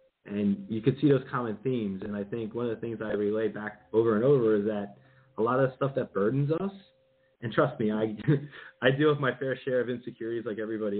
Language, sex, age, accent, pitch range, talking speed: English, male, 30-49, American, 110-145 Hz, 240 wpm